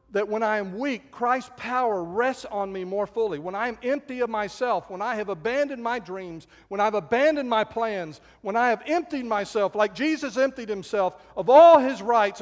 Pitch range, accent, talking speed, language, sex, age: 145-240 Hz, American, 210 wpm, English, male, 50-69